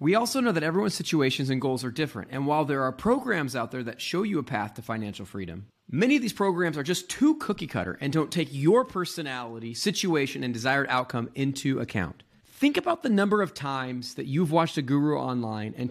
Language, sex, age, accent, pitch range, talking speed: English, male, 30-49, American, 125-180 Hz, 220 wpm